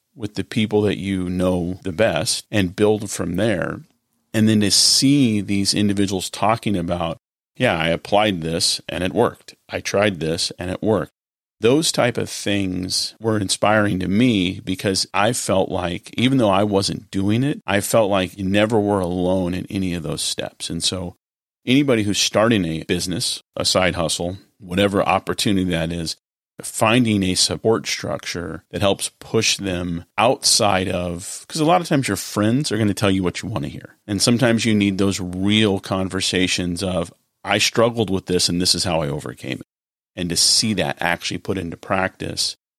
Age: 40-59